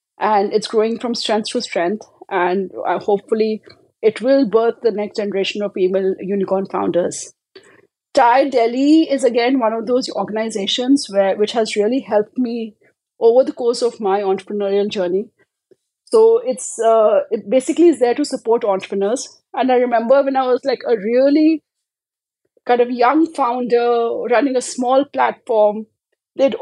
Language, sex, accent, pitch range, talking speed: English, female, Indian, 210-260 Hz, 155 wpm